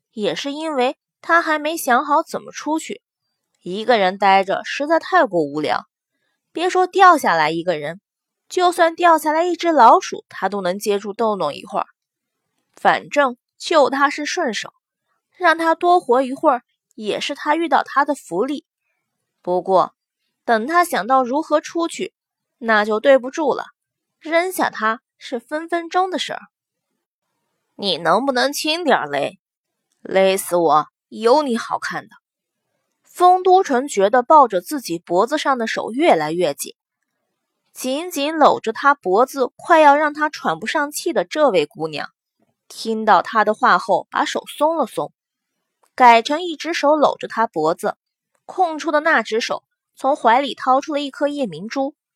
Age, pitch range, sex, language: 20-39, 225-325 Hz, female, Chinese